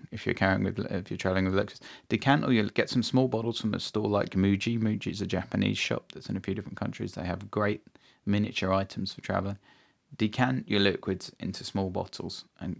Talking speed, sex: 215 wpm, male